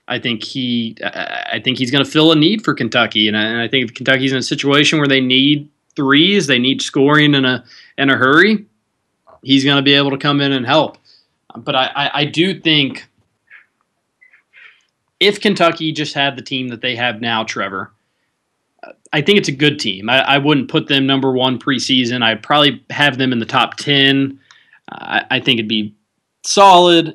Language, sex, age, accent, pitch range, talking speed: English, male, 20-39, American, 120-145 Hz, 200 wpm